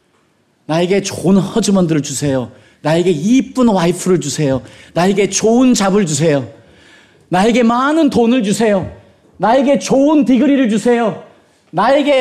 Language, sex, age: Korean, male, 40-59